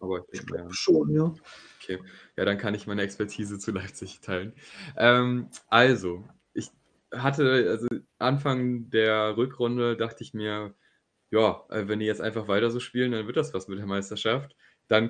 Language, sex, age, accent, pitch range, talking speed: German, male, 10-29, German, 100-120 Hz, 165 wpm